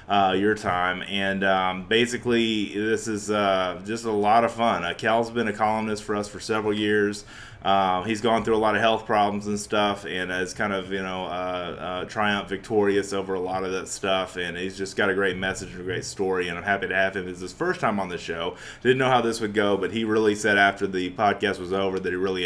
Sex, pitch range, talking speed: male, 95-115 Hz, 250 wpm